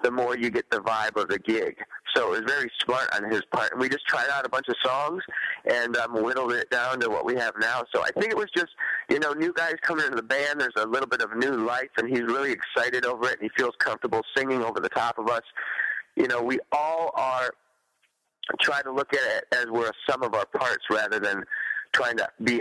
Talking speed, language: 250 wpm, English